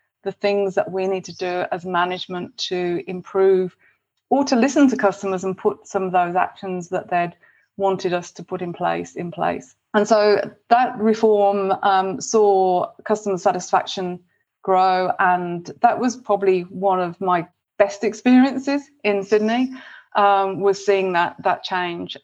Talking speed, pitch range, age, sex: 155 wpm, 180-205 Hz, 30-49, female